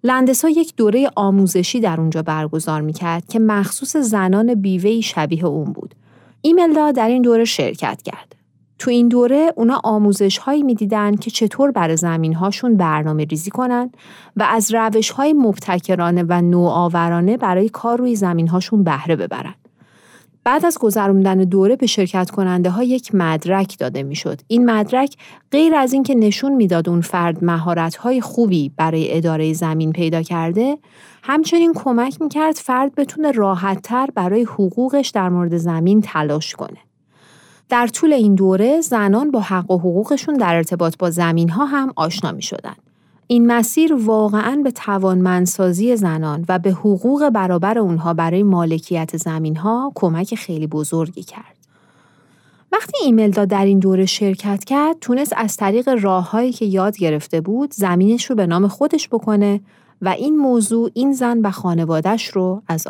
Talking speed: 155 wpm